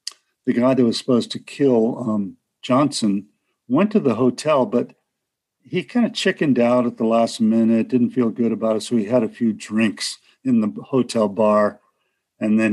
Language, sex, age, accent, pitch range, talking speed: English, male, 50-69, American, 110-140 Hz, 190 wpm